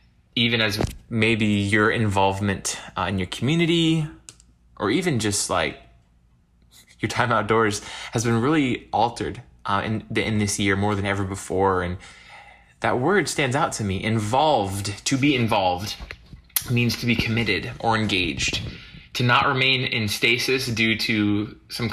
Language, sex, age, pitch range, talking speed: English, male, 20-39, 100-115 Hz, 150 wpm